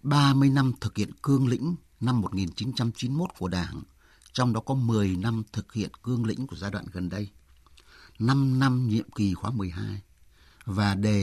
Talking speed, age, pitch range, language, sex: 170 wpm, 60-79, 100-130 Hz, Vietnamese, male